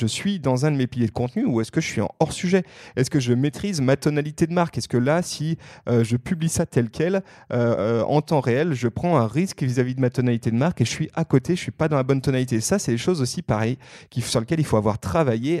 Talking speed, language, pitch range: 290 wpm, French, 125-170 Hz